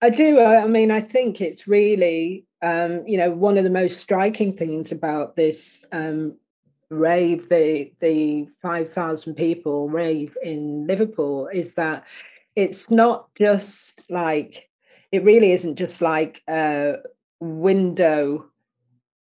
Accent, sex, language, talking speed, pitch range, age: British, female, English, 125 wpm, 155-190 Hz, 40-59